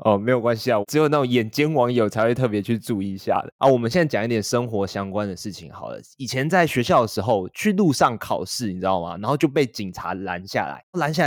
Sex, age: male, 20-39